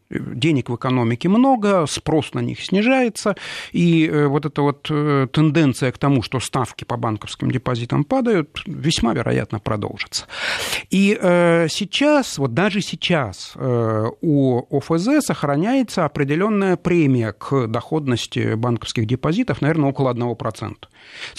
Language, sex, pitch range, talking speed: Russian, male, 120-175 Hz, 115 wpm